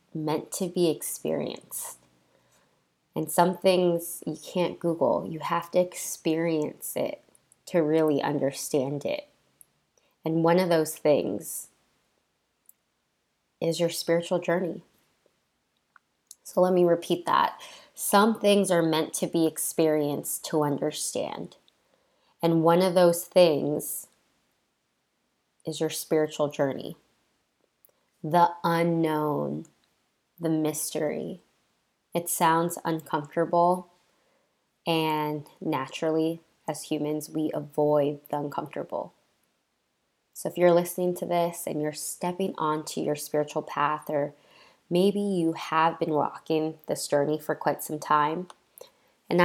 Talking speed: 110 wpm